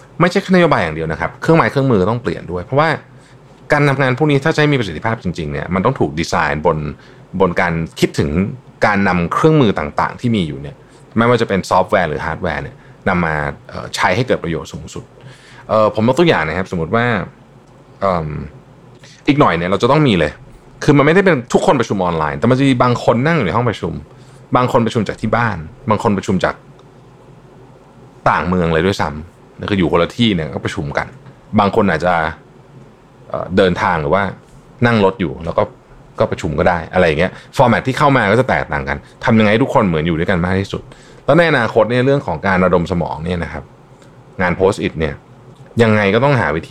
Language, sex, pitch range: Thai, male, 90-135 Hz